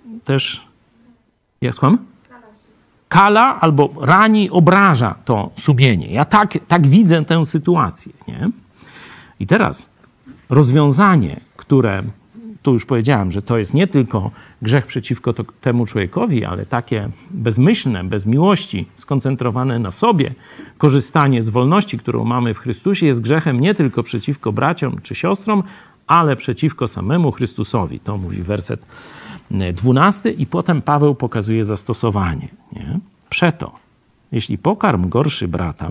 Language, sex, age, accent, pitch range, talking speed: Polish, male, 50-69, native, 115-175 Hz, 125 wpm